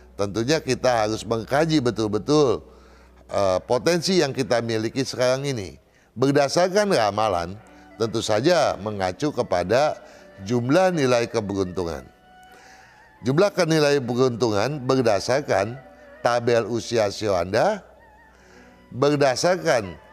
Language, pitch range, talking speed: Indonesian, 105-135 Hz, 90 wpm